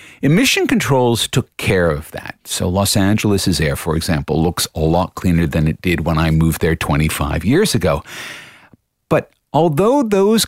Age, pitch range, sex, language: 50-69, 80-115 Hz, male, English